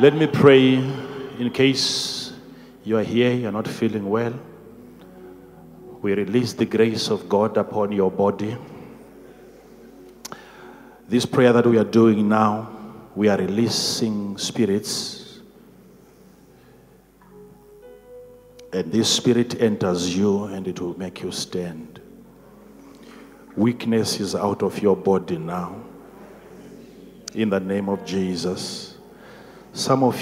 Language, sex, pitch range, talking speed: English, male, 100-135 Hz, 115 wpm